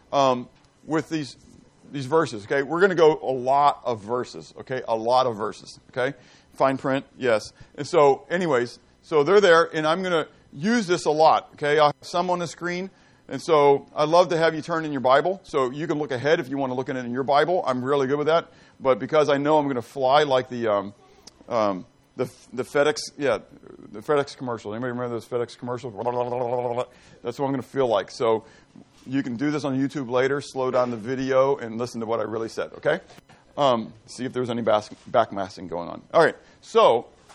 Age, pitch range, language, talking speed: 40-59, 125-160 Hz, English, 220 wpm